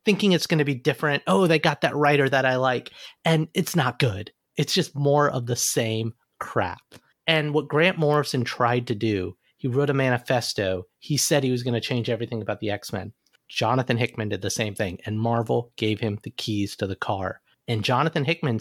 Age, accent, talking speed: 30-49, American, 210 wpm